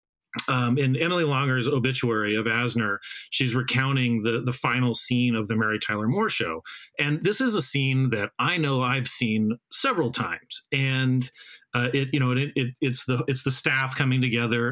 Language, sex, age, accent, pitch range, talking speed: English, male, 40-59, American, 115-150 Hz, 185 wpm